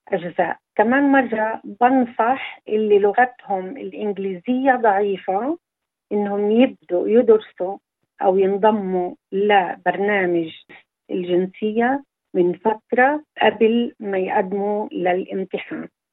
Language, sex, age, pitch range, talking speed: Arabic, female, 50-69, 190-240 Hz, 80 wpm